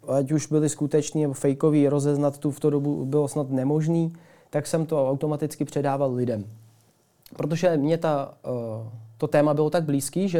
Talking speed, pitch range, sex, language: 165 wpm, 140-155 Hz, male, Czech